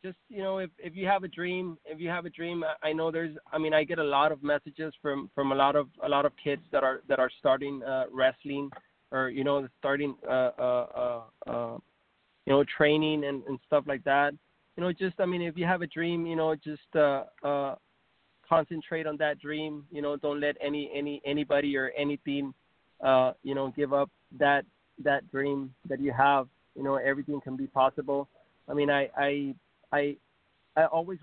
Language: English